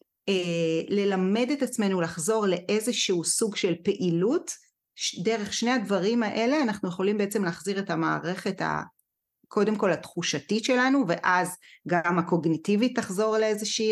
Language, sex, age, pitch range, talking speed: Hebrew, female, 40-59, 175-230 Hz, 115 wpm